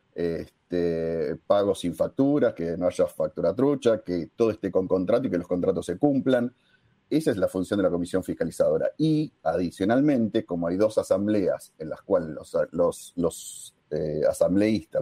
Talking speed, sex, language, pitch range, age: 160 wpm, male, Spanish, 90-140 Hz, 40-59